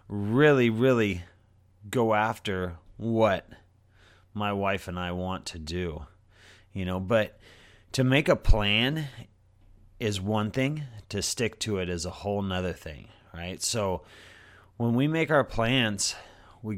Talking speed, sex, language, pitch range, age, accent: 140 wpm, male, English, 95-130 Hz, 30-49, American